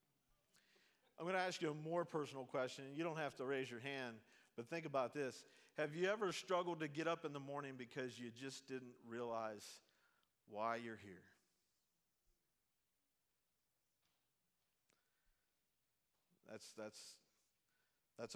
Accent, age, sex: American, 50-69, male